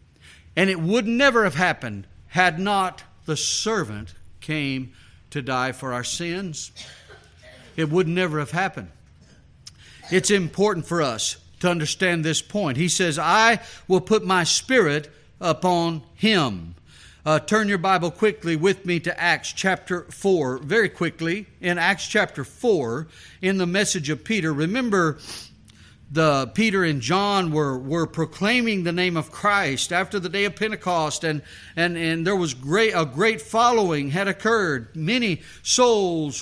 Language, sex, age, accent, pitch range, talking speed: English, male, 50-69, American, 150-200 Hz, 150 wpm